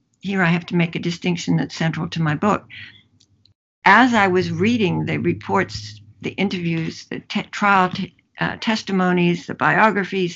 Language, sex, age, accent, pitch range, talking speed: English, female, 60-79, American, 165-200 Hz, 150 wpm